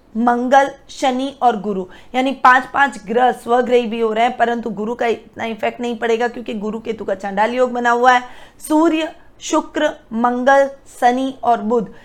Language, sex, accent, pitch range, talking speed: Hindi, female, native, 230-285 Hz, 175 wpm